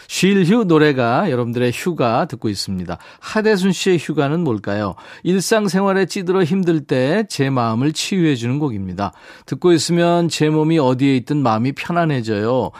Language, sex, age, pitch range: Korean, male, 40-59, 115-170 Hz